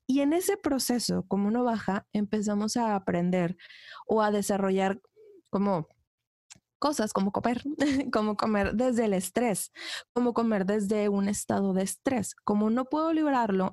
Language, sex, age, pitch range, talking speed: Spanish, female, 20-39, 195-245 Hz, 145 wpm